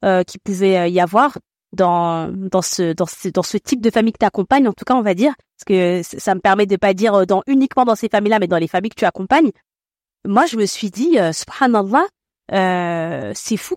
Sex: female